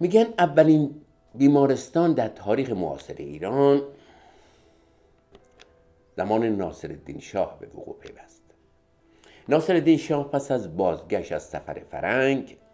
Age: 60-79